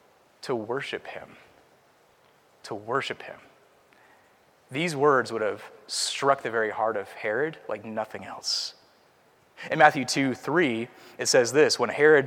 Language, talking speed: English, 135 wpm